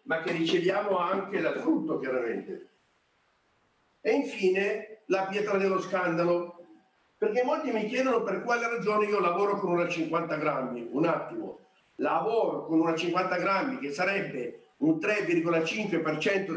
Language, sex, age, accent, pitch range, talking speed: Italian, male, 50-69, native, 175-240 Hz, 135 wpm